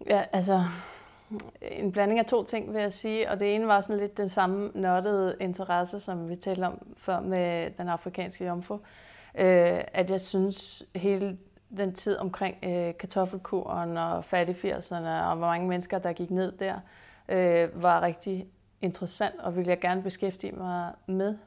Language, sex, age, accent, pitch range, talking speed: Danish, female, 30-49, native, 175-200 Hz, 170 wpm